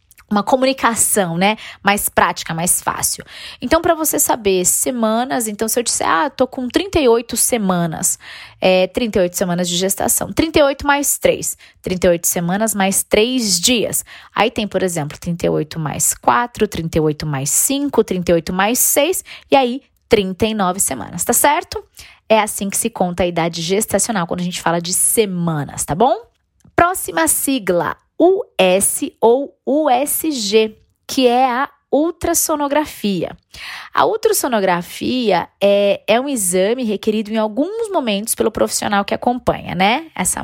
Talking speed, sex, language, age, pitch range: 140 wpm, female, Portuguese, 20-39, 185-265 Hz